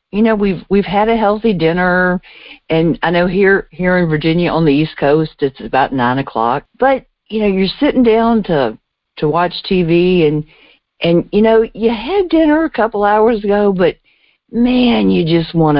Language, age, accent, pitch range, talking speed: English, 50-69, American, 150-215 Hz, 185 wpm